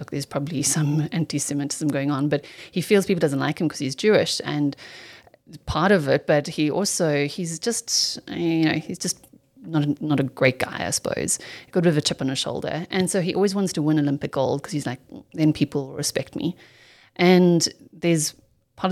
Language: English